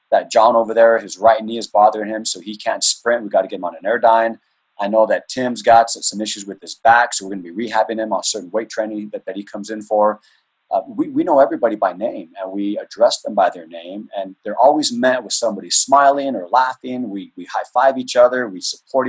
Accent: American